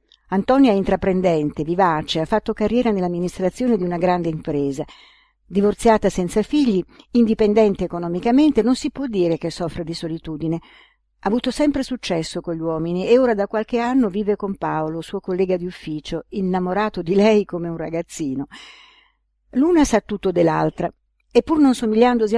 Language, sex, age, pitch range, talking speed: Italian, female, 50-69, 160-225 Hz, 155 wpm